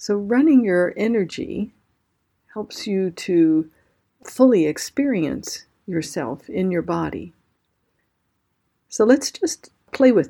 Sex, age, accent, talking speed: female, 50-69, American, 105 wpm